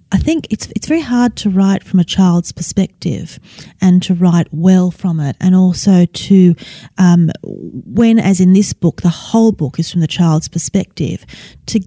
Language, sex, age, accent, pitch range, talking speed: English, female, 30-49, Australian, 165-195 Hz, 180 wpm